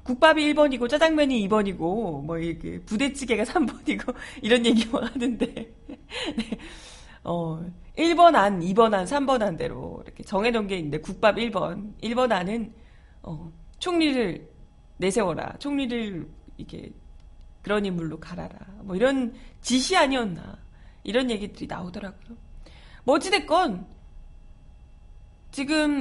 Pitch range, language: 195-285 Hz, Korean